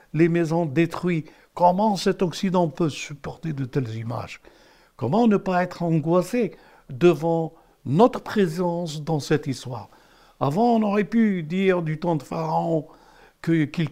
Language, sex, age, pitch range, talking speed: French, male, 60-79, 140-175 Hz, 140 wpm